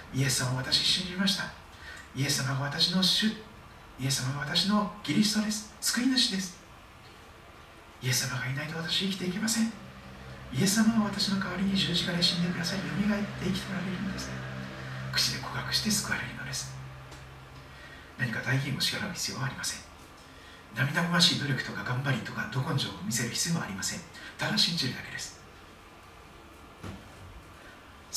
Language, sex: Japanese, male